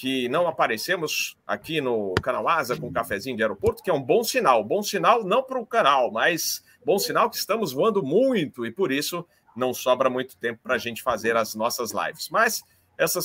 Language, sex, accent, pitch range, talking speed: Portuguese, male, Brazilian, 115-180 Hz, 210 wpm